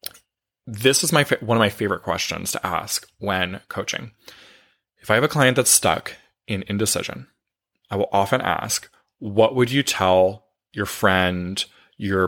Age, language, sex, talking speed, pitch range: 20-39, English, male, 155 wpm, 95-115 Hz